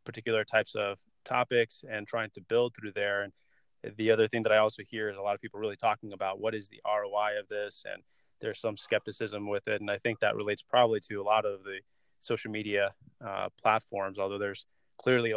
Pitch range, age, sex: 100-115 Hz, 20-39, male